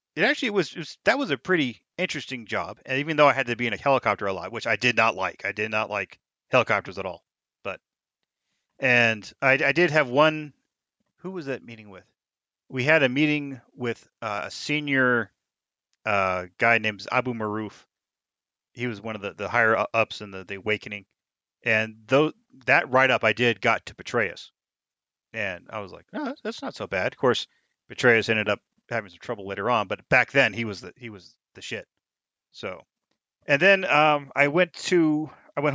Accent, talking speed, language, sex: American, 200 wpm, English, male